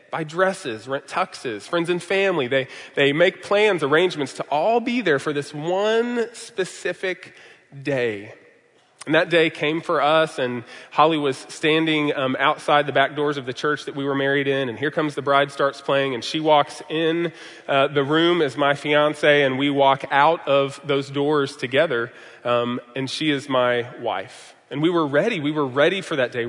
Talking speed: 195 wpm